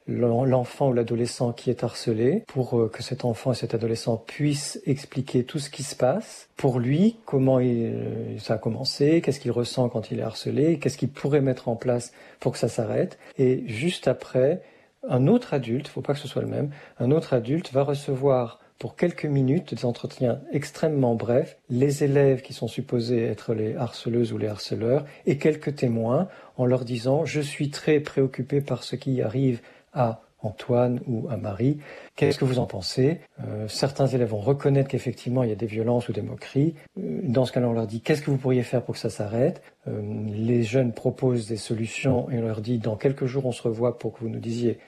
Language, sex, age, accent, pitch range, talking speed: French, male, 50-69, French, 115-140 Hz, 205 wpm